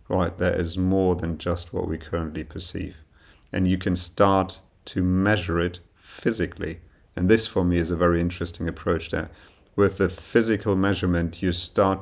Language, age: English, 40-59